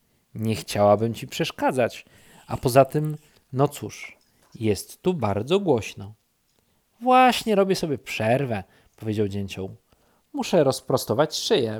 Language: Polish